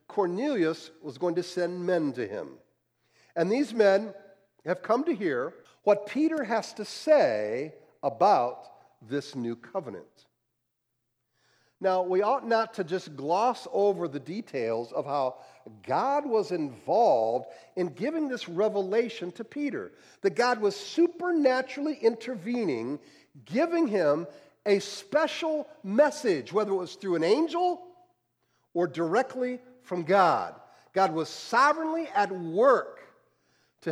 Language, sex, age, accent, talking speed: English, male, 50-69, American, 125 wpm